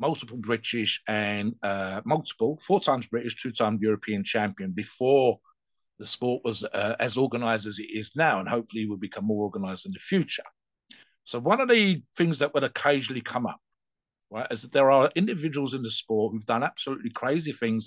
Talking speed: 190 wpm